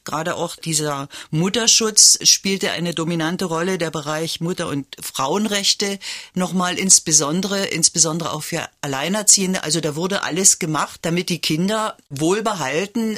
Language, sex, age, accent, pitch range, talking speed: German, female, 50-69, German, 160-195 Hz, 130 wpm